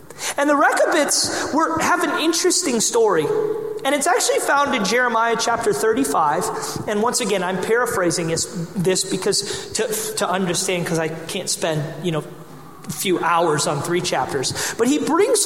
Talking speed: 160 wpm